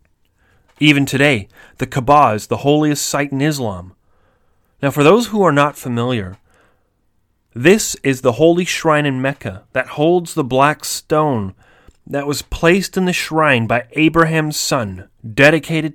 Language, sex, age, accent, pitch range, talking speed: English, male, 30-49, American, 105-150 Hz, 145 wpm